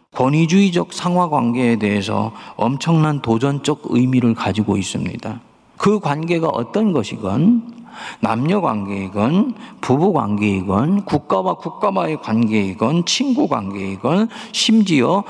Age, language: 40-59, Korean